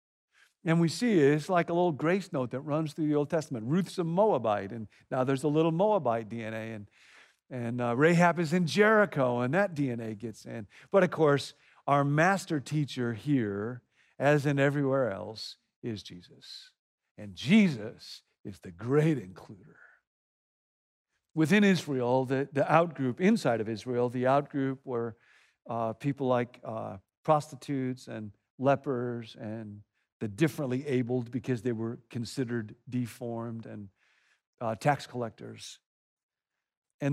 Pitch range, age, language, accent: 115-155 Hz, 50-69, English, American